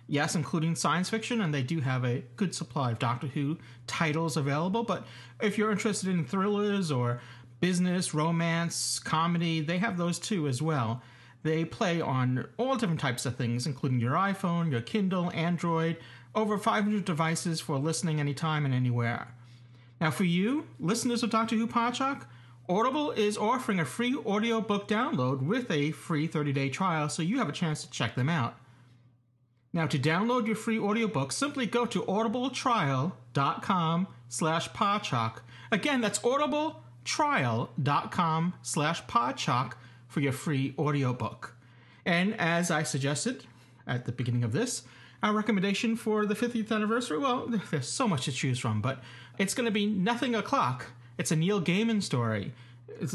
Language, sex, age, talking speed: English, male, 40-59, 155 wpm